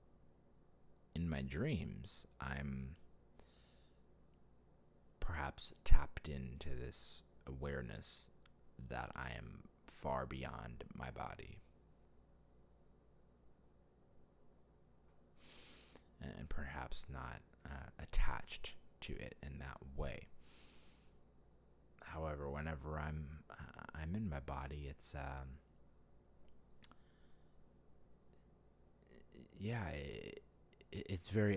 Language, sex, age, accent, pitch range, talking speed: English, male, 30-49, American, 65-80 Hz, 75 wpm